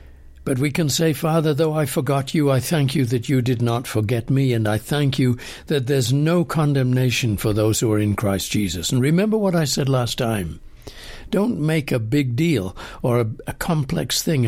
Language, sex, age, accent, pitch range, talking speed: English, male, 60-79, British, 115-145 Hz, 205 wpm